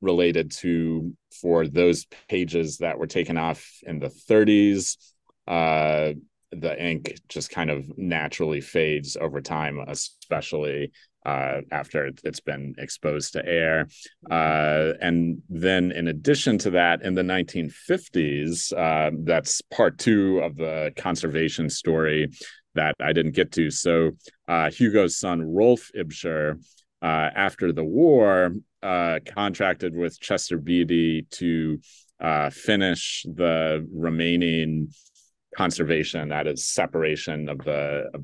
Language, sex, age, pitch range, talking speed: English, male, 30-49, 80-90 Hz, 120 wpm